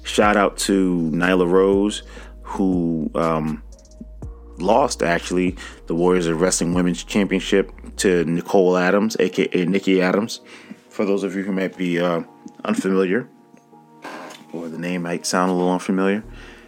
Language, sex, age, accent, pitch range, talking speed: English, male, 30-49, American, 80-95 Hz, 135 wpm